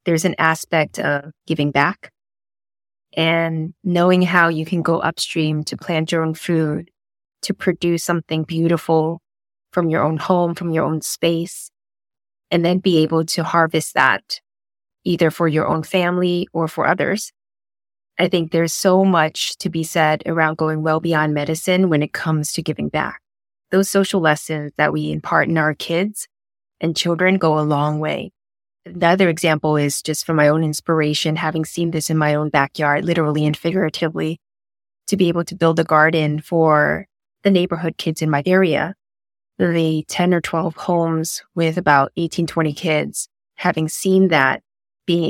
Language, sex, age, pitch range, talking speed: English, female, 20-39, 150-175 Hz, 165 wpm